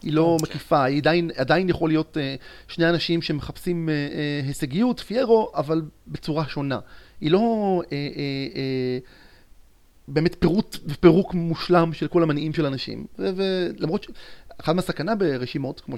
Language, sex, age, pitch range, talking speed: Hebrew, male, 30-49, 130-170 Hz, 150 wpm